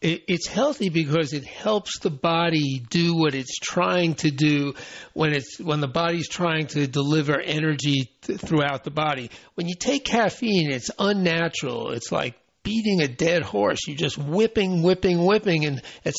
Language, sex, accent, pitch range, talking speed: English, male, American, 150-195 Hz, 165 wpm